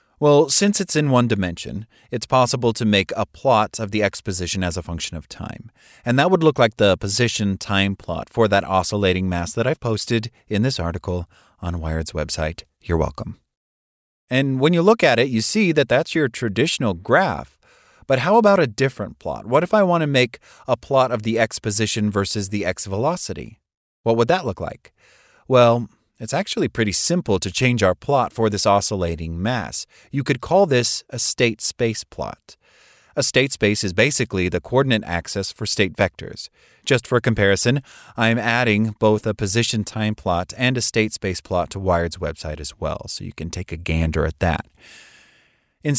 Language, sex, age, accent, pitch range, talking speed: English, male, 30-49, American, 95-130 Hz, 185 wpm